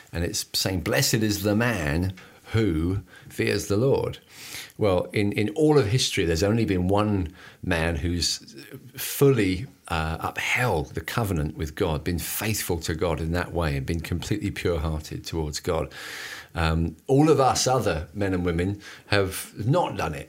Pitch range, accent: 80-105 Hz, British